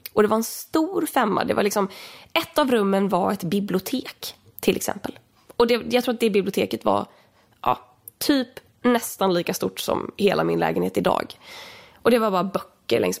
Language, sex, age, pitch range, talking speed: Swedish, female, 20-39, 195-275 Hz, 185 wpm